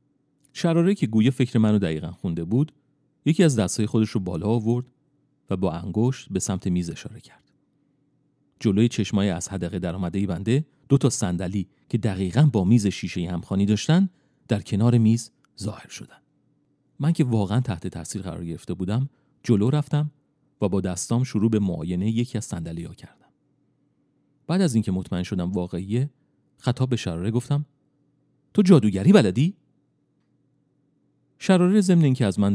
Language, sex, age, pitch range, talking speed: Persian, male, 40-59, 95-145 Hz, 150 wpm